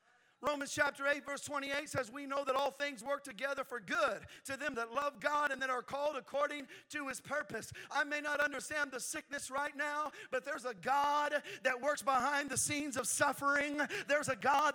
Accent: American